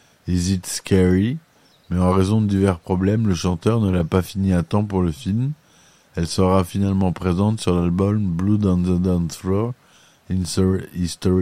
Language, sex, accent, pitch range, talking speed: French, male, French, 90-100 Hz, 180 wpm